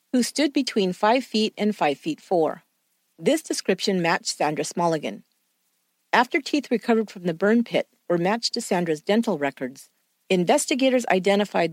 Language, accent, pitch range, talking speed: English, American, 130-225 Hz, 150 wpm